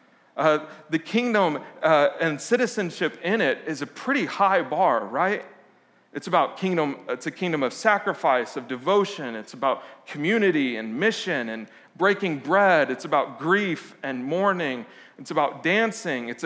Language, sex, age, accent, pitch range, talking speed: English, male, 40-59, American, 145-195 Hz, 150 wpm